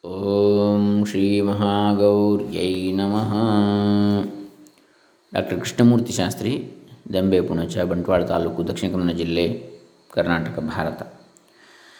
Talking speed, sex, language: 60 wpm, male, Kannada